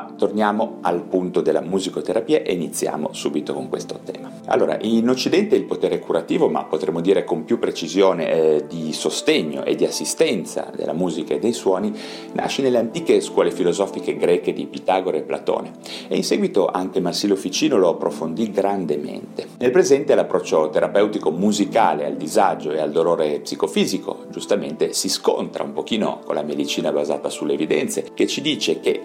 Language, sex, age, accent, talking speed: Italian, male, 40-59, native, 165 wpm